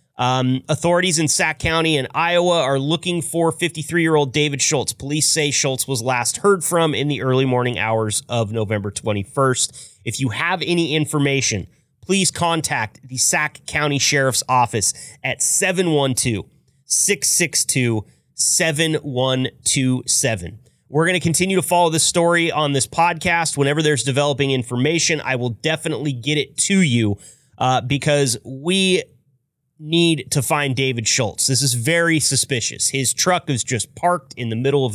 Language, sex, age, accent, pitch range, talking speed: English, male, 30-49, American, 125-165 Hz, 145 wpm